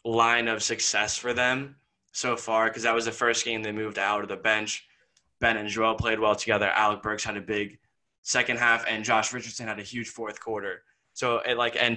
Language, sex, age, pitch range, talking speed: English, male, 20-39, 105-125 Hz, 220 wpm